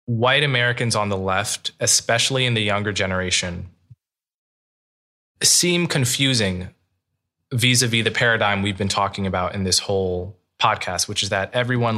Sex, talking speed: male, 135 wpm